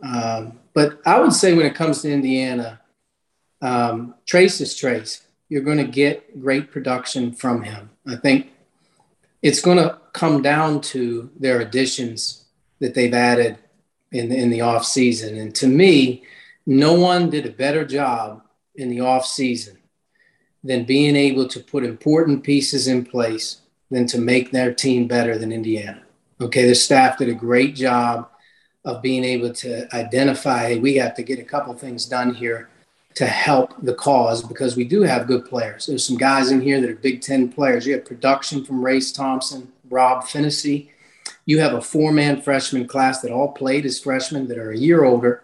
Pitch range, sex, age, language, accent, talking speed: 120-140 Hz, male, 40-59, English, American, 175 wpm